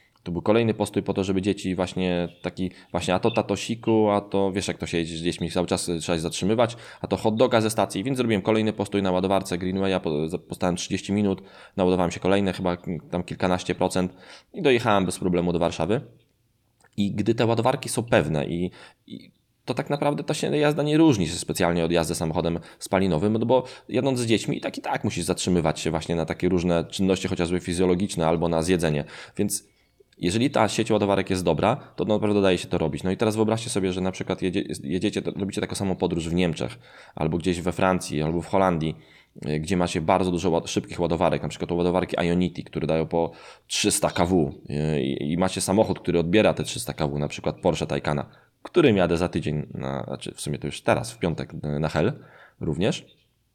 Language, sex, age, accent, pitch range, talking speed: Polish, male, 20-39, native, 85-105 Hz, 205 wpm